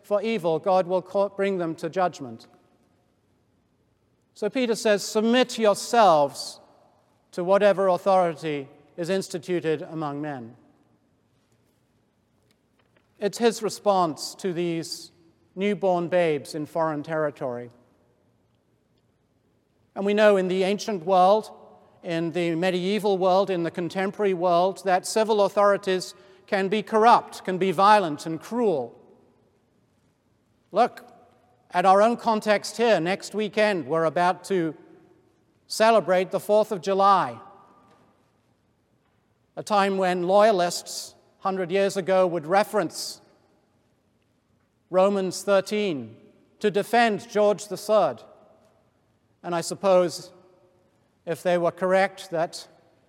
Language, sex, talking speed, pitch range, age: English, male, 105 wpm, 165-200 Hz, 40-59